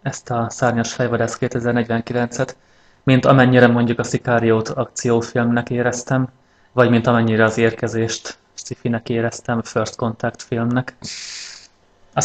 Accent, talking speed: Finnish, 120 wpm